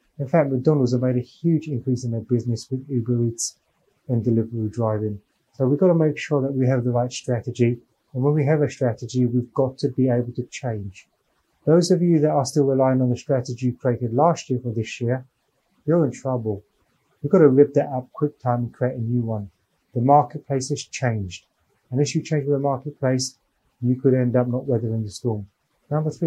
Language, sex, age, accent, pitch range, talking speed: English, male, 30-49, British, 120-145 Hz, 215 wpm